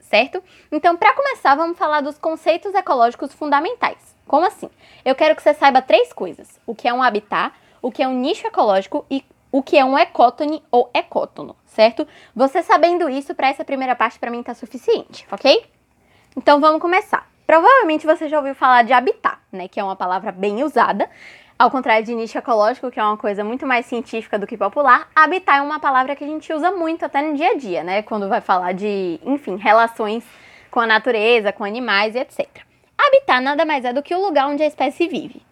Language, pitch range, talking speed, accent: Portuguese, 235-315 Hz, 210 wpm, Brazilian